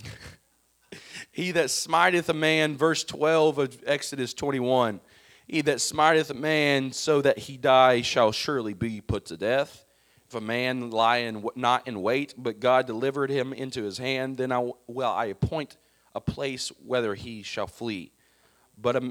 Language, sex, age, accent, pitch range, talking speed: English, male, 40-59, American, 110-140 Hz, 165 wpm